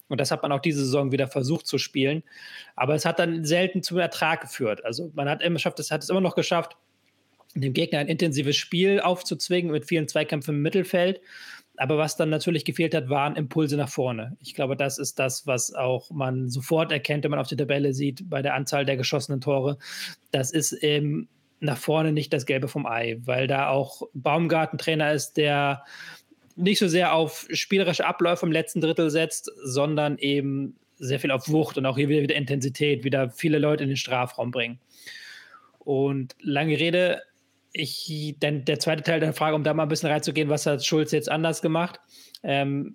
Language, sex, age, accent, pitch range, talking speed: German, male, 20-39, German, 140-165 Hz, 195 wpm